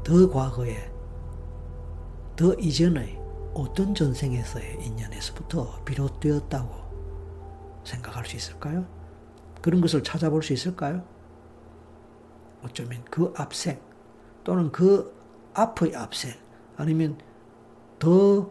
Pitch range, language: 110-160 Hz, Korean